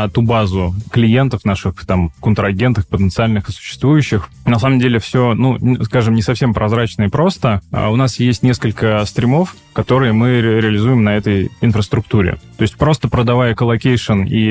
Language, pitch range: Russian, 100-120 Hz